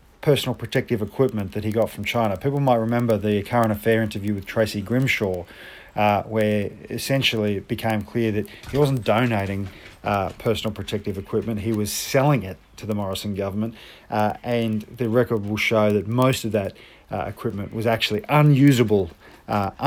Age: 40-59